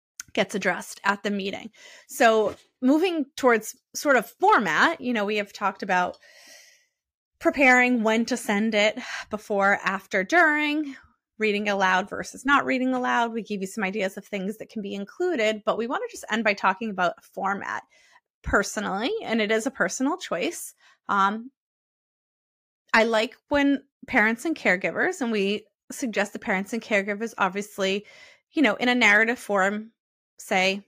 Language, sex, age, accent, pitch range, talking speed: English, female, 20-39, American, 200-260 Hz, 155 wpm